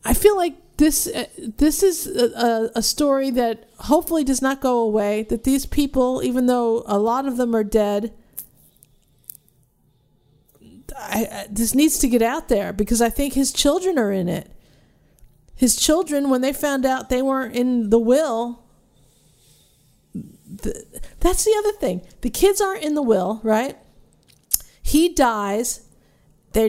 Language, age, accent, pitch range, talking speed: English, 50-69, American, 225-295 Hz, 155 wpm